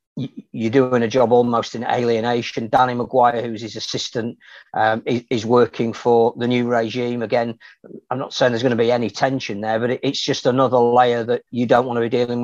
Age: 40-59